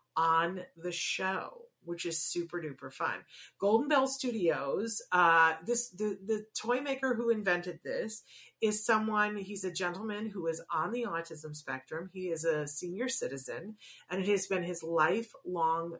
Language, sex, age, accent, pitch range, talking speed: English, female, 30-49, American, 165-210 Hz, 160 wpm